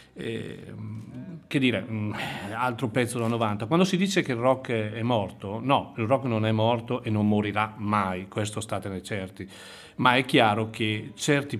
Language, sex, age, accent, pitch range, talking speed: Italian, male, 40-59, native, 105-130 Hz, 175 wpm